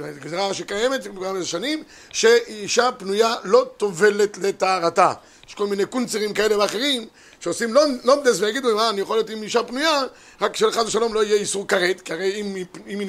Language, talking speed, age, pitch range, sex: Hebrew, 185 wpm, 50-69, 195-245 Hz, male